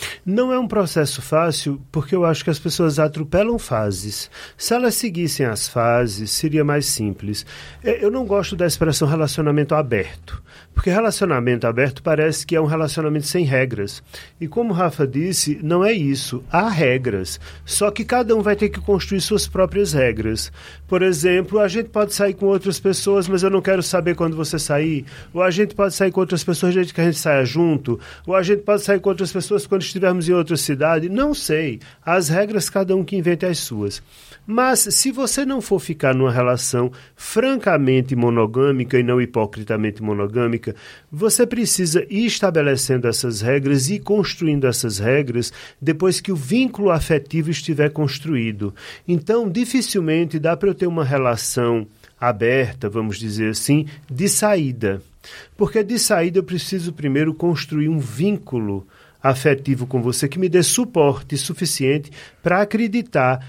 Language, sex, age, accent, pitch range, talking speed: Portuguese, male, 40-59, Brazilian, 130-195 Hz, 170 wpm